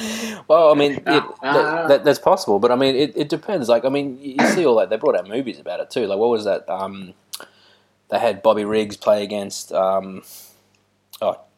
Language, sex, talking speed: English, male, 210 wpm